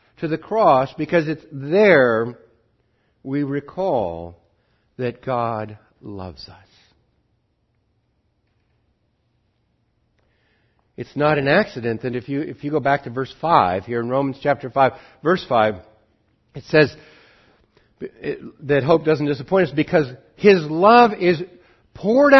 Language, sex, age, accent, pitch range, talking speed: English, male, 60-79, American, 110-160 Hz, 120 wpm